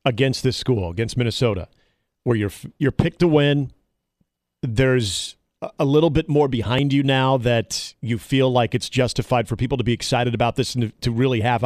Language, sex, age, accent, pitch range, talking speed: English, male, 40-59, American, 115-140 Hz, 185 wpm